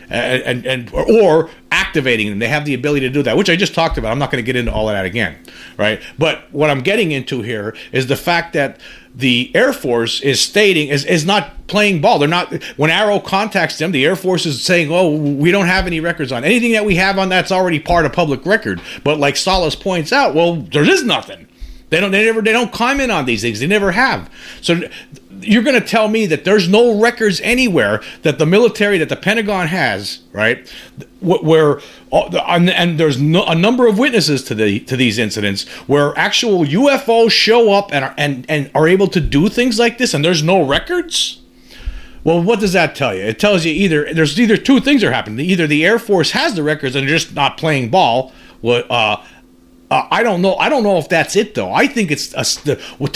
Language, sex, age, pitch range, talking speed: English, male, 40-59, 140-205 Hz, 225 wpm